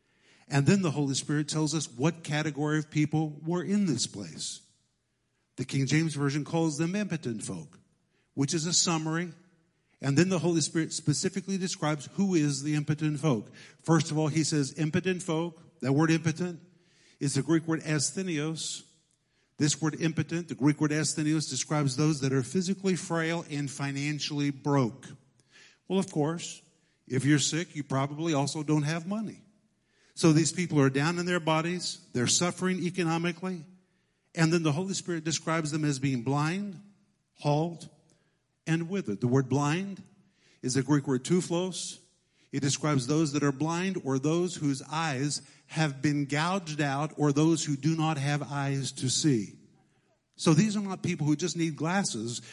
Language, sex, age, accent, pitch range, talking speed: English, male, 50-69, American, 145-170 Hz, 165 wpm